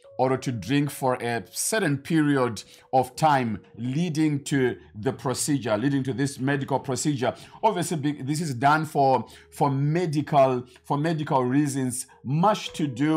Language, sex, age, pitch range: English, male, 50-69, 130-155 Hz